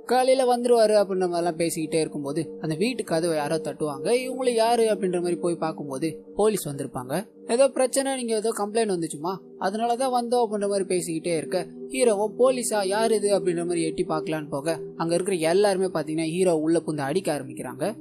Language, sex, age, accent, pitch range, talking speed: Tamil, male, 20-39, native, 160-225 Hz, 160 wpm